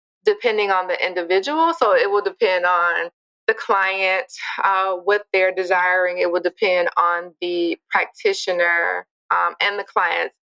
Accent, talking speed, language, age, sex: American, 145 wpm, English, 20-39, female